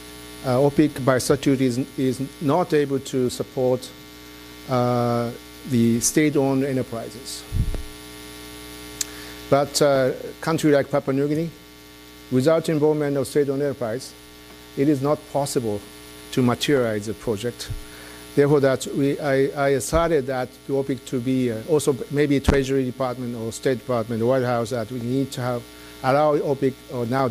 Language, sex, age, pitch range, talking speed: English, male, 50-69, 110-140 Hz, 145 wpm